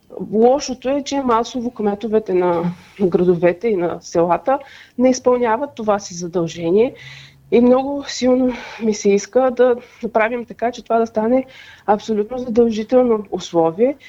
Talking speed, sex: 130 wpm, female